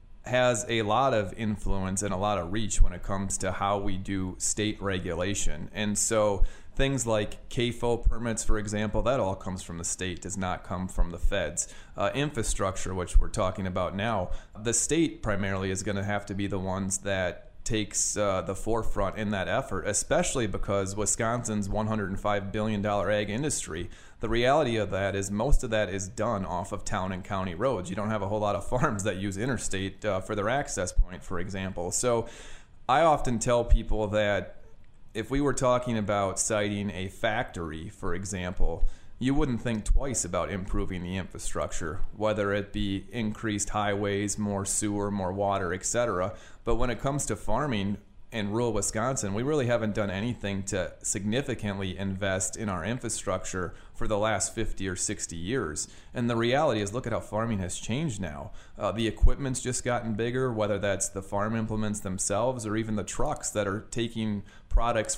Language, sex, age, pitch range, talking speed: English, male, 30-49, 95-110 Hz, 180 wpm